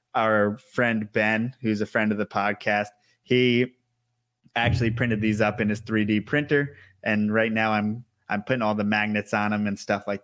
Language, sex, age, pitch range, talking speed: English, male, 20-39, 105-125 Hz, 190 wpm